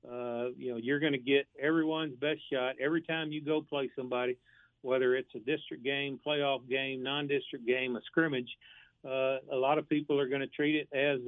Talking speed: 200 wpm